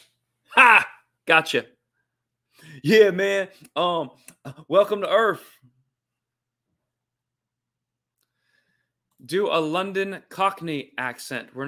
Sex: male